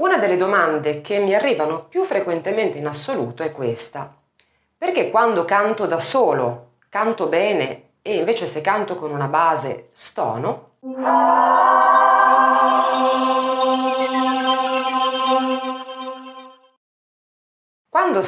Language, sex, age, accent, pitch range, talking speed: Italian, female, 30-49, native, 130-205 Hz, 90 wpm